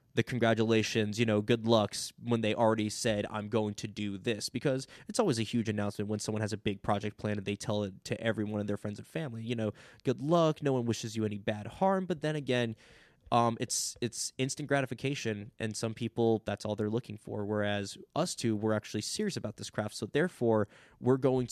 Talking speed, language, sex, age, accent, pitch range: 225 wpm, English, male, 20-39, American, 105-130 Hz